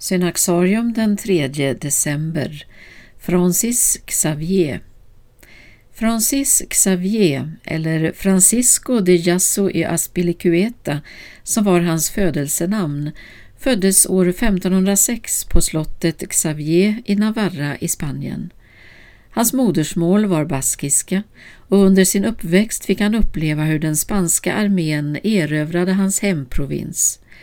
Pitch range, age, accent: 150-195 Hz, 60-79, native